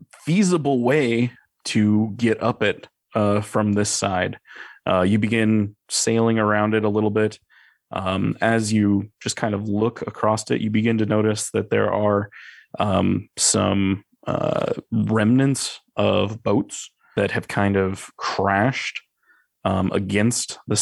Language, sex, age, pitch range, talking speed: English, male, 20-39, 95-110 Hz, 140 wpm